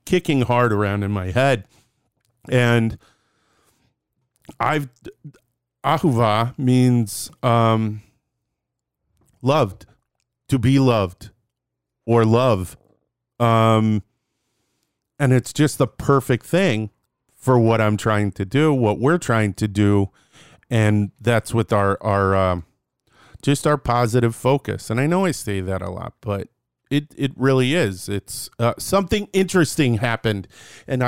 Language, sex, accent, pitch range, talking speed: English, male, American, 105-130 Hz, 125 wpm